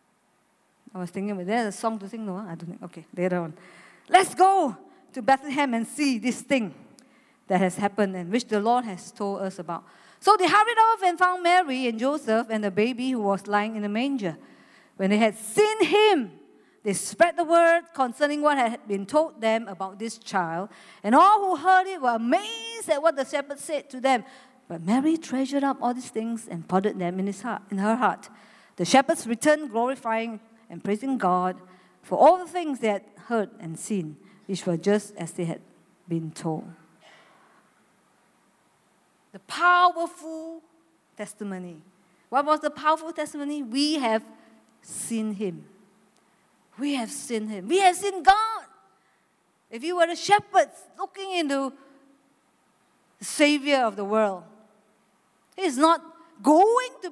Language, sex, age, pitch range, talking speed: English, female, 50-69, 200-315 Hz, 170 wpm